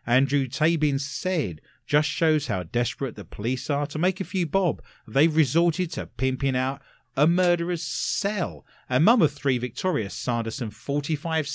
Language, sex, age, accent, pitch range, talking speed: English, male, 30-49, British, 115-170 Hz, 155 wpm